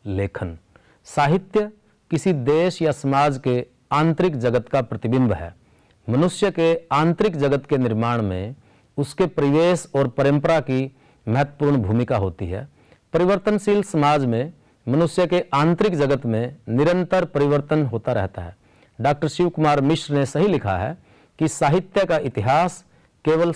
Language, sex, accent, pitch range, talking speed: Hindi, male, native, 120-165 Hz, 135 wpm